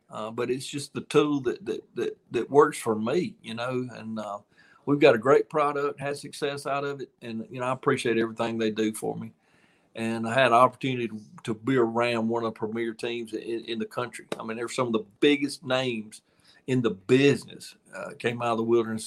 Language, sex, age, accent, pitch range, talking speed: English, male, 50-69, American, 110-135 Hz, 225 wpm